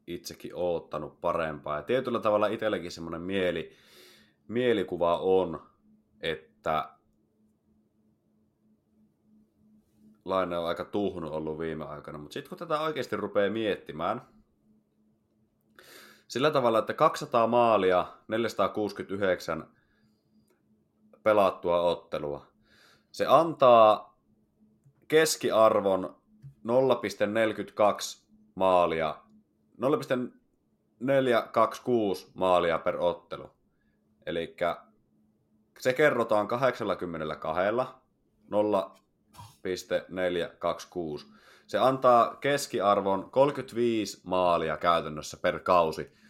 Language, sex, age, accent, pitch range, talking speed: Finnish, male, 30-49, native, 90-115 Hz, 75 wpm